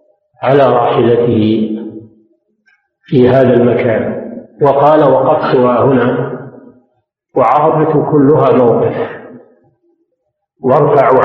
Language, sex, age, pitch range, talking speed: Arabic, male, 50-69, 130-180 Hz, 65 wpm